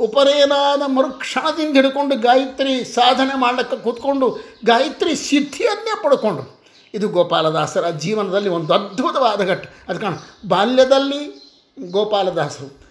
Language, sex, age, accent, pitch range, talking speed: Kannada, male, 50-69, native, 205-270 Hz, 95 wpm